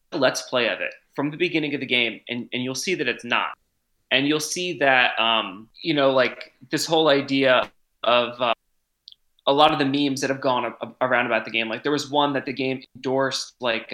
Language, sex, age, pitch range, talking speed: English, male, 20-39, 125-150 Hz, 220 wpm